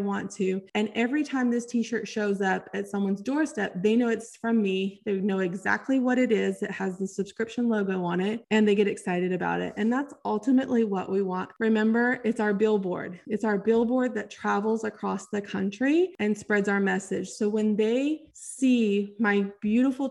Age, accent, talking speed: 20-39, American, 190 wpm